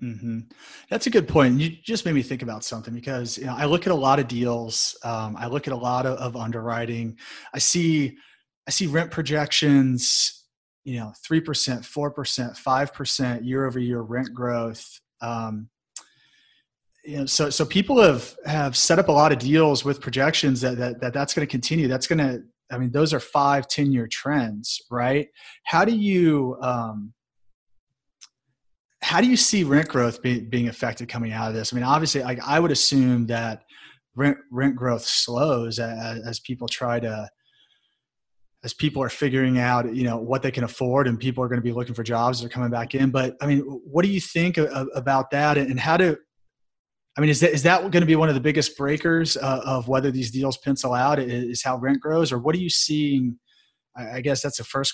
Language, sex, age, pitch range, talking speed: English, male, 30-49, 120-145 Hz, 210 wpm